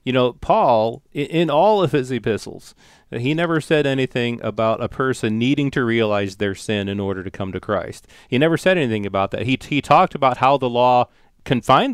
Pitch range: 110-140 Hz